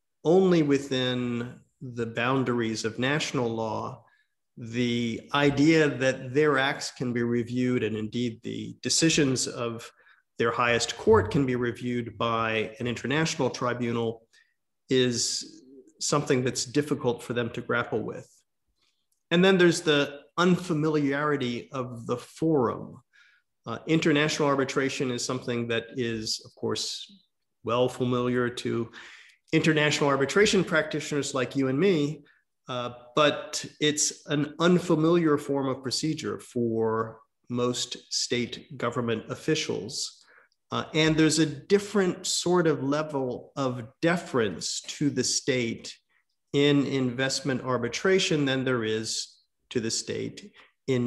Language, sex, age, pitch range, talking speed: English, male, 40-59, 120-150 Hz, 120 wpm